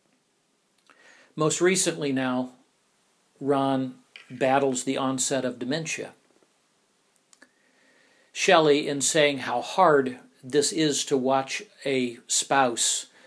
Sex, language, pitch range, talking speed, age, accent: male, English, 130-160 Hz, 90 wpm, 50-69, American